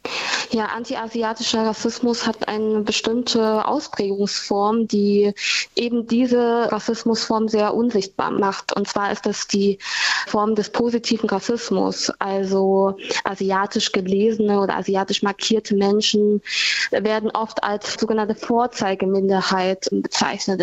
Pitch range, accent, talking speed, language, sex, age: 200-230 Hz, German, 105 wpm, German, female, 20-39